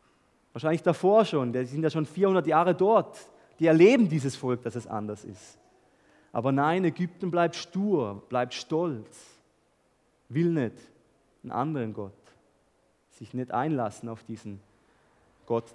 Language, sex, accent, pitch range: German, male, German, 115-175 Hz